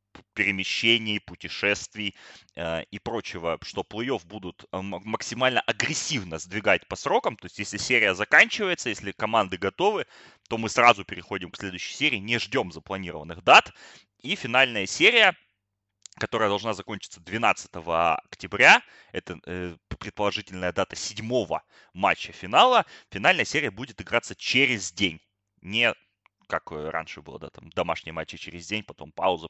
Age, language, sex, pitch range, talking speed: 20-39, Russian, male, 90-115 Hz, 135 wpm